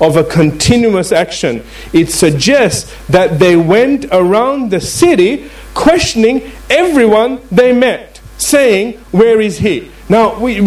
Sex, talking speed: male, 125 wpm